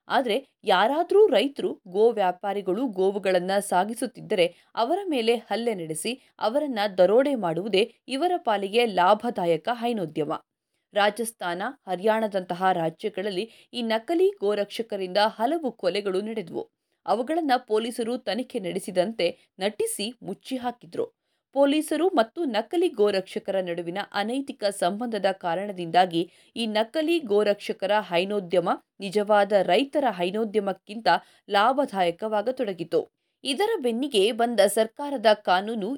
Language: Kannada